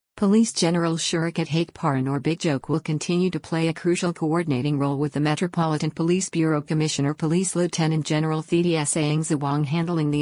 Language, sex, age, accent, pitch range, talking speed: English, female, 50-69, American, 145-165 Hz, 170 wpm